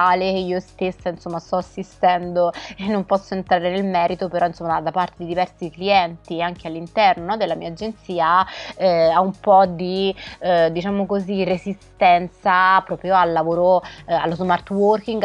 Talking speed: 155 wpm